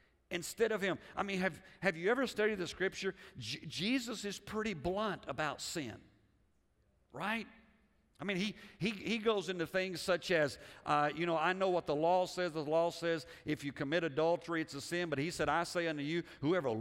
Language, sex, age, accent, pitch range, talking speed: English, male, 50-69, American, 165-210 Hz, 205 wpm